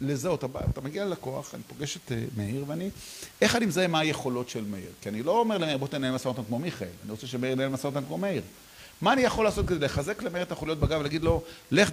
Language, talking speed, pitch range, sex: Hebrew, 235 wpm, 130-200 Hz, male